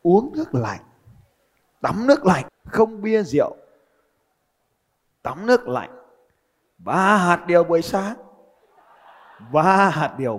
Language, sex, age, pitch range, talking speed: Vietnamese, male, 30-49, 155-225 Hz, 115 wpm